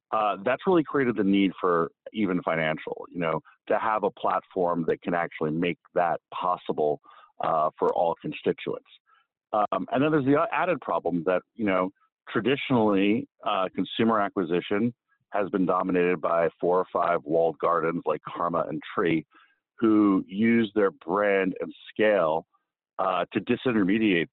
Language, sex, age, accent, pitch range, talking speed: English, male, 50-69, American, 85-105 Hz, 150 wpm